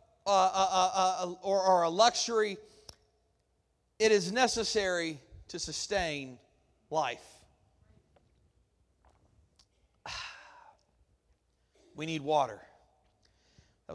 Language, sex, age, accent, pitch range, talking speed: English, male, 40-59, American, 180-245 Hz, 75 wpm